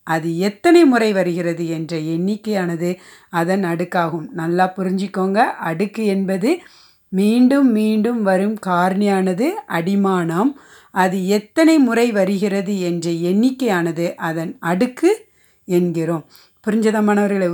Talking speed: 90 wpm